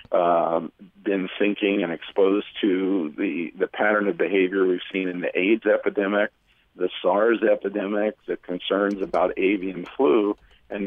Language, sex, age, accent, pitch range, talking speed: English, male, 50-69, American, 95-130 Hz, 145 wpm